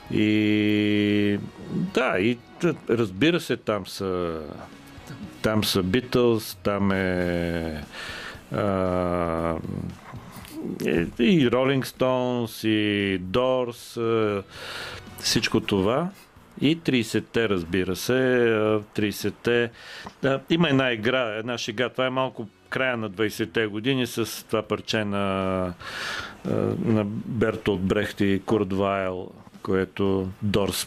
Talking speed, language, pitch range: 95 wpm, Bulgarian, 100-120 Hz